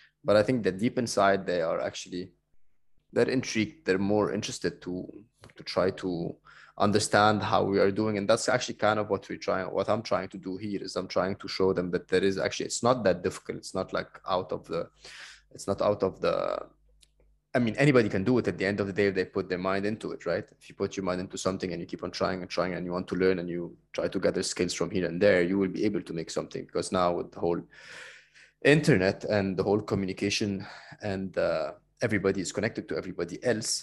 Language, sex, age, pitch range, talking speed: English, male, 20-39, 95-115 Hz, 240 wpm